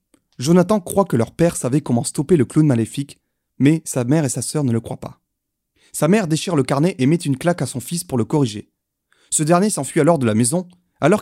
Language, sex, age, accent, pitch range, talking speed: French, male, 30-49, French, 130-180 Hz, 235 wpm